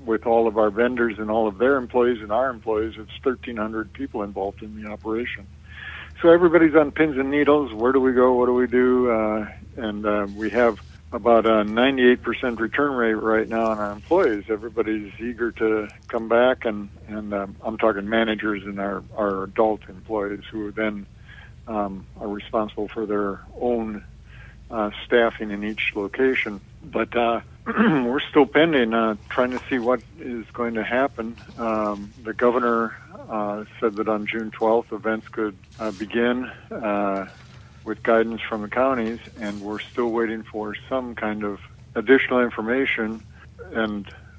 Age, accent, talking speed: 60-79, American, 170 wpm